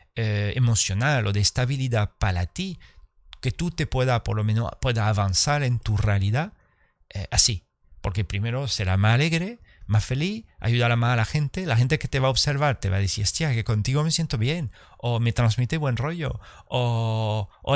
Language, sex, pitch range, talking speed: Spanish, male, 100-130 Hz, 195 wpm